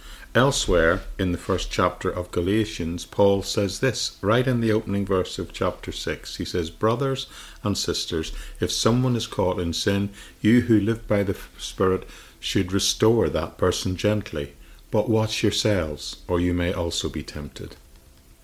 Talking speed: 160 wpm